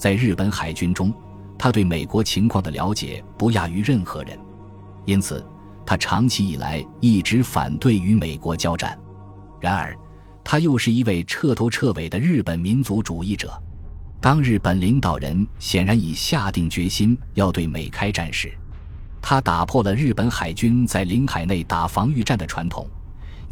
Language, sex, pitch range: Chinese, male, 85-115 Hz